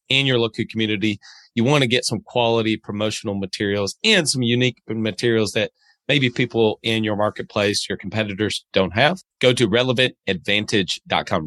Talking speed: 150 wpm